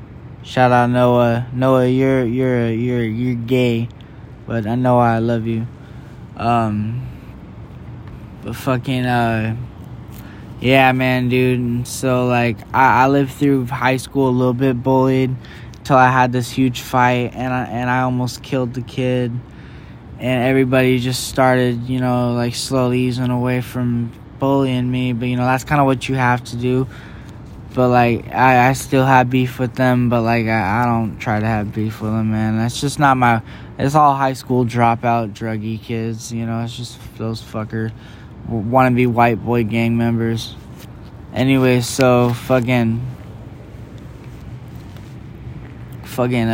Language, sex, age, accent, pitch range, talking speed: English, male, 10-29, American, 115-130 Hz, 155 wpm